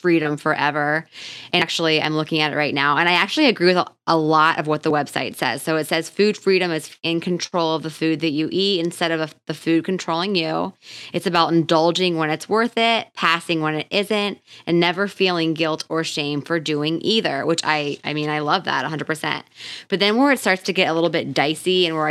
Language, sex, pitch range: English, female, 155-185 Hz